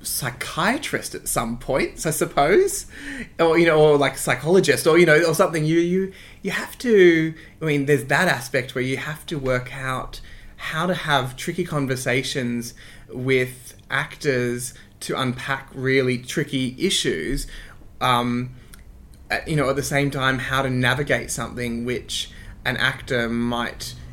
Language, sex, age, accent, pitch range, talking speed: English, male, 20-39, Australian, 120-150 Hz, 150 wpm